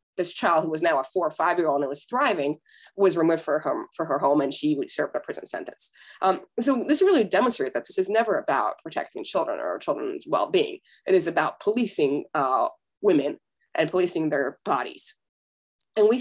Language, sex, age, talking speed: English, female, 20-39, 195 wpm